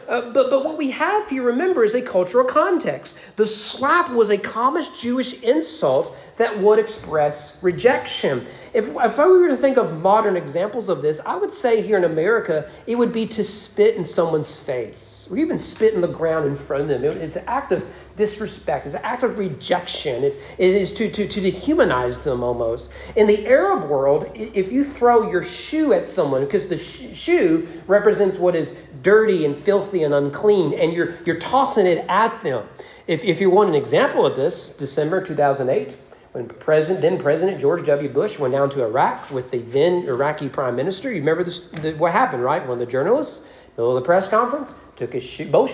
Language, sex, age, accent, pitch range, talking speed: English, male, 40-59, American, 150-250 Hz, 200 wpm